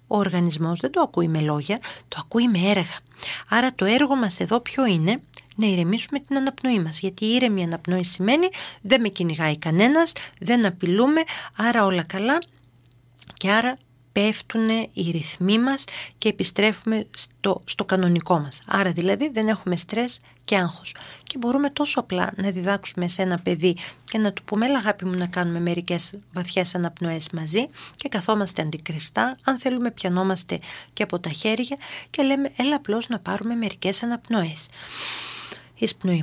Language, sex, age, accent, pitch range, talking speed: Greek, female, 40-59, native, 175-240 Hz, 155 wpm